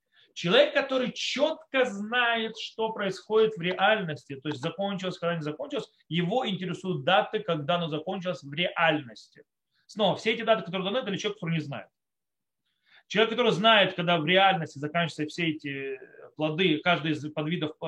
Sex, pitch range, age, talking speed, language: male, 155-210 Hz, 30-49, 155 wpm, Russian